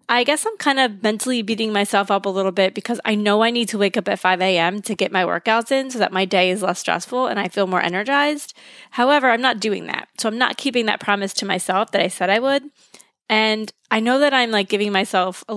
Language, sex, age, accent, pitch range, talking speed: English, female, 20-39, American, 195-240 Hz, 260 wpm